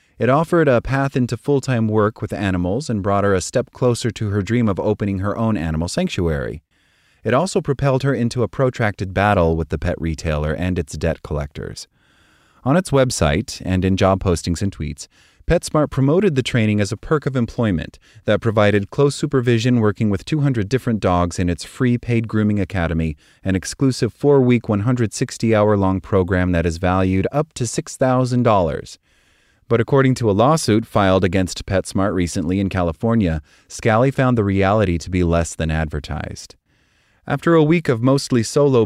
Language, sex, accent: English, male, American